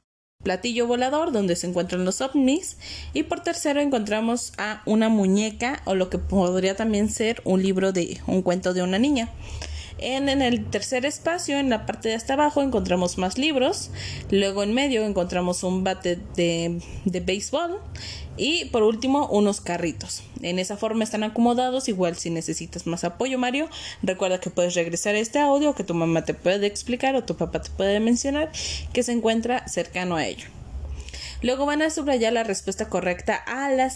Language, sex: Spanish, female